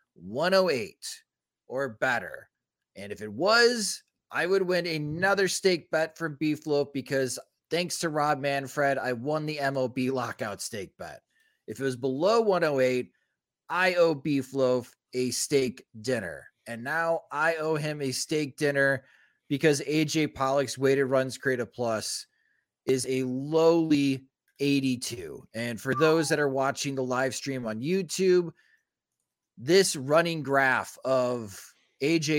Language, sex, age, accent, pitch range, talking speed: English, male, 30-49, American, 130-165 Hz, 135 wpm